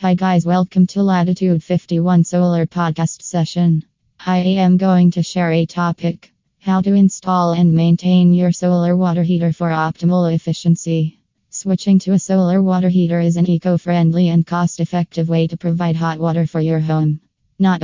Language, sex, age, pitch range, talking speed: English, female, 20-39, 165-180 Hz, 160 wpm